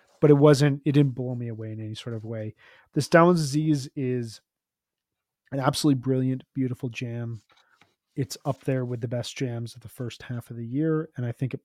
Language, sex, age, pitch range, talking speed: English, male, 30-49, 115-135 Hz, 205 wpm